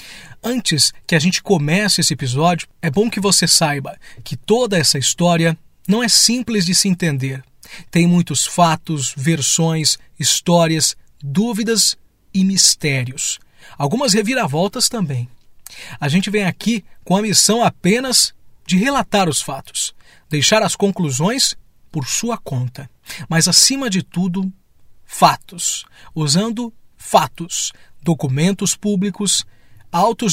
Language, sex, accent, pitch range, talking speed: Portuguese, male, Brazilian, 150-195 Hz, 120 wpm